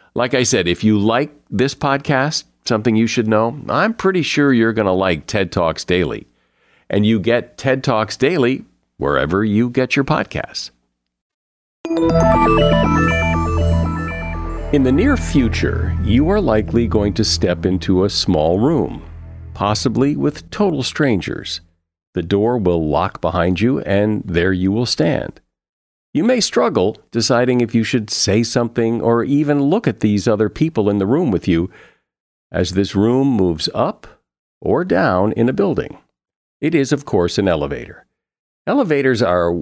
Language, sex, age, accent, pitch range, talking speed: English, male, 50-69, American, 85-125 Hz, 155 wpm